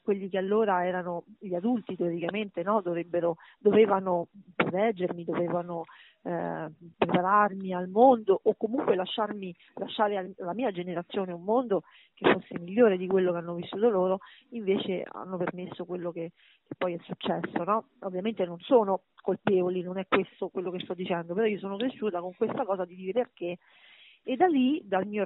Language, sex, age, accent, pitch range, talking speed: Italian, female, 40-59, native, 180-220 Hz, 165 wpm